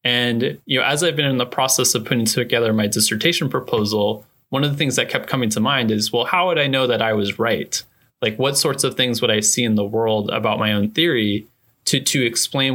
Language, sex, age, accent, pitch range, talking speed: English, male, 20-39, American, 110-135 Hz, 245 wpm